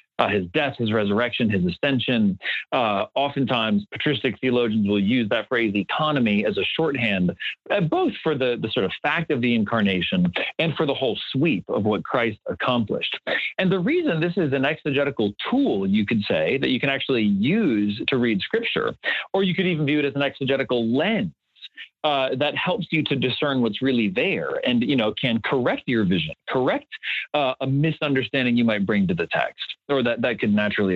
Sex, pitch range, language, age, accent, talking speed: male, 120-170 Hz, English, 40-59, American, 190 wpm